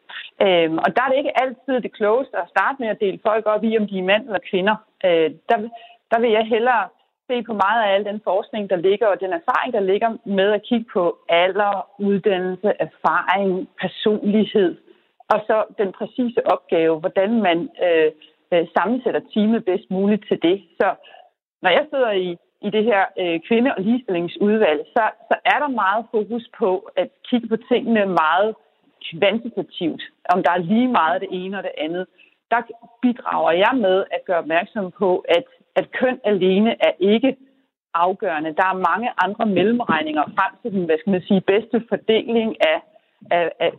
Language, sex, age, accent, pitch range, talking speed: Danish, female, 40-59, native, 185-235 Hz, 180 wpm